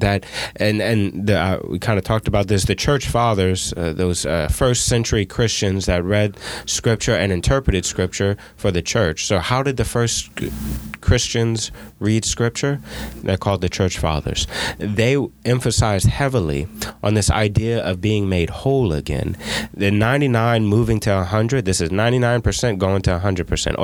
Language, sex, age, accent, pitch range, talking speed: English, male, 20-39, American, 90-115 Hz, 160 wpm